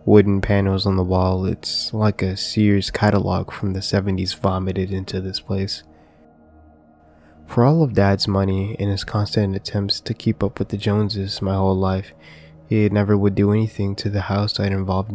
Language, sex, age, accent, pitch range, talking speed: English, male, 20-39, American, 95-110 Hz, 180 wpm